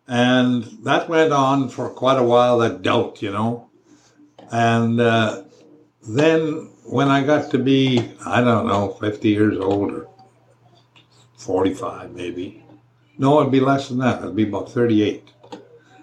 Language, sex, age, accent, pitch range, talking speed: English, male, 60-79, American, 110-135 Hz, 155 wpm